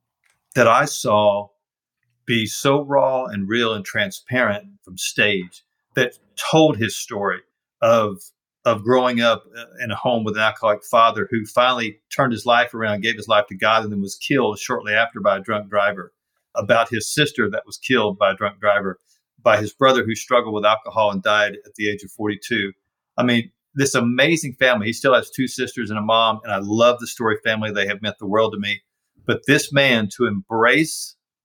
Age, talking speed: 50-69, 195 wpm